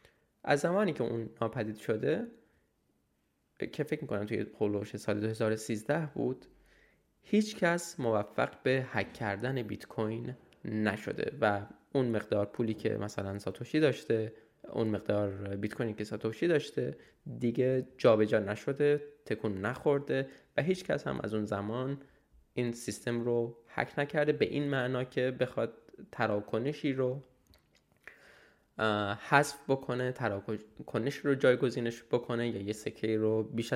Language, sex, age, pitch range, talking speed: Persian, male, 20-39, 105-135 Hz, 130 wpm